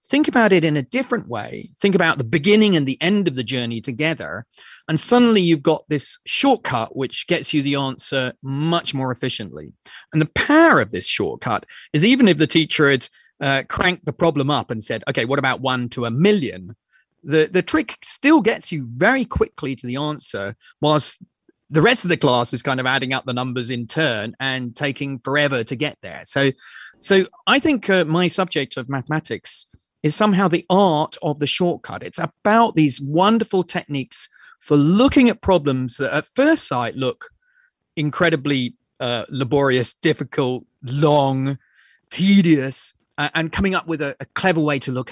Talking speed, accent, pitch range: 180 wpm, British, 130-185 Hz